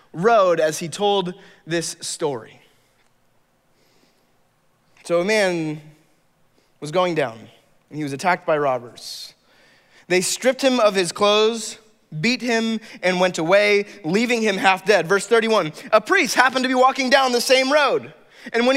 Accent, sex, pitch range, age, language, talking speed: American, male, 180-235 Hz, 20-39, English, 150 wpm